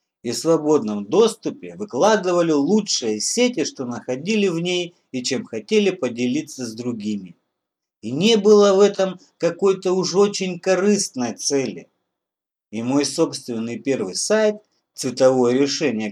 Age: 50-69